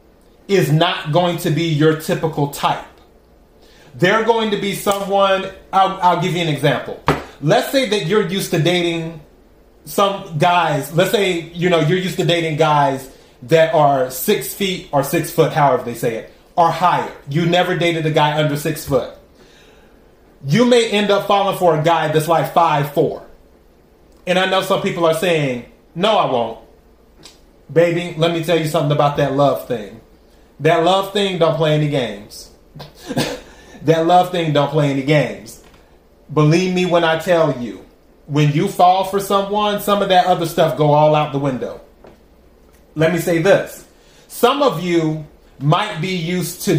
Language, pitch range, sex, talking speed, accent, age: English, 155-180 Hz, male, 175 wpm, American, 30-49